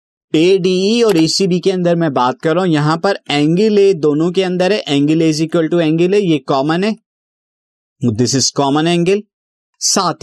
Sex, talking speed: male, 175 wpm